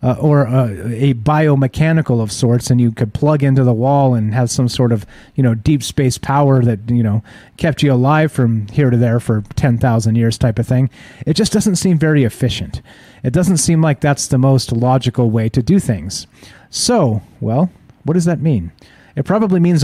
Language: English